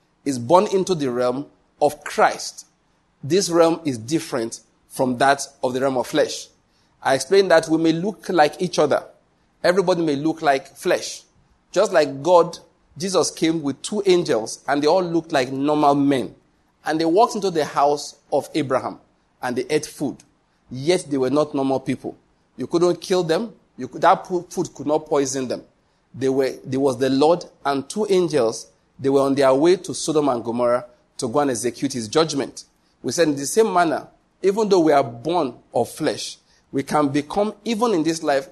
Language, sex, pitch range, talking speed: English, male, 140-180 Hz, 190 wpm